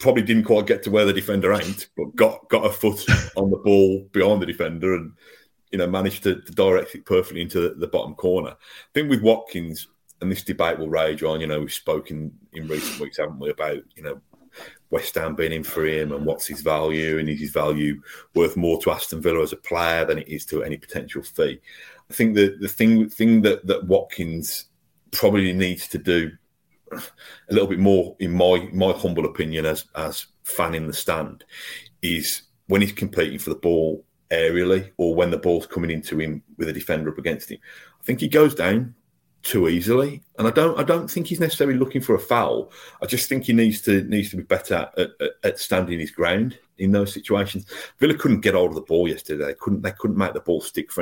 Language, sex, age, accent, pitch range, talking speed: English, male, 30-49, British, 80-110 Hz, 220 wpm